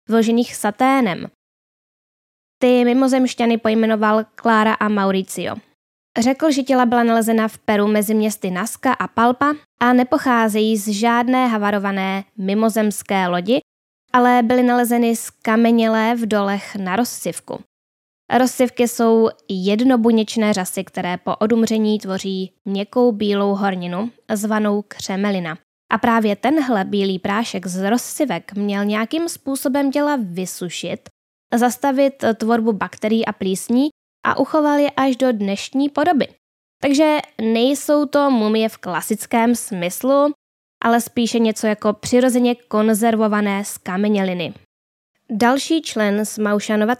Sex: female